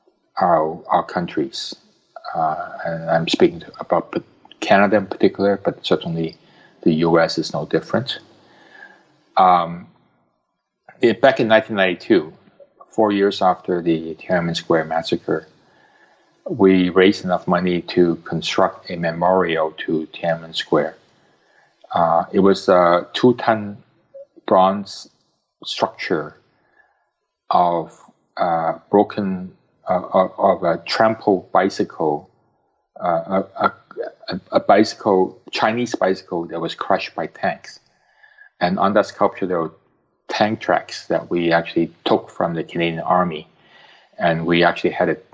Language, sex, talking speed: English, male, 125 wpm